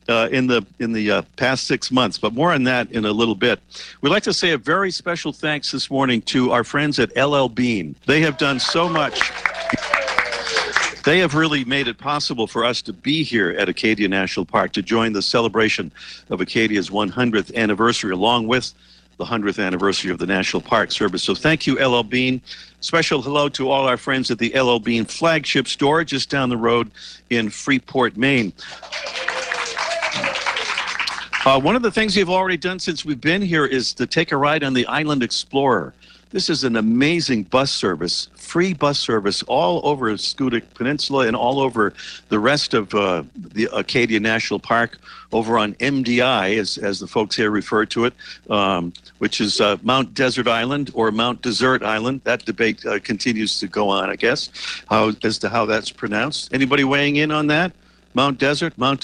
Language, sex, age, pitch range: English, male, 50-69, 110-140 Hz